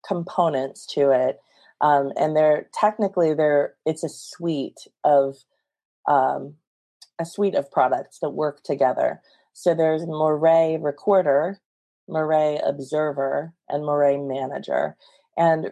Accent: American